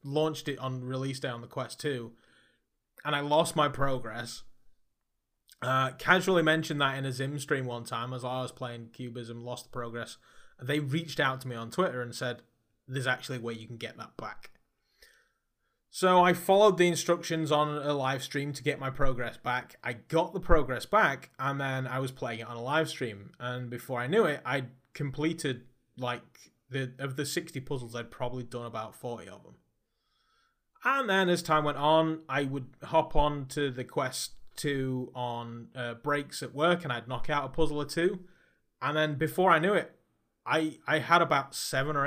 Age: 20-39